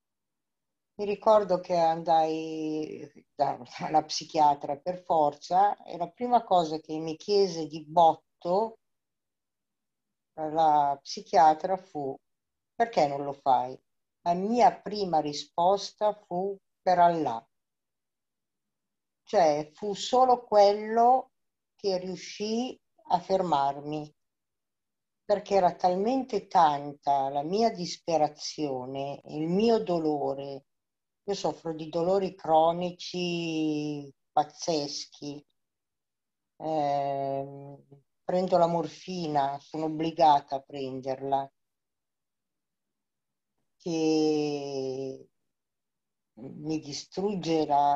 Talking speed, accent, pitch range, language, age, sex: 85 wpm, native, 145-180 Hz, Italian, 60-79, female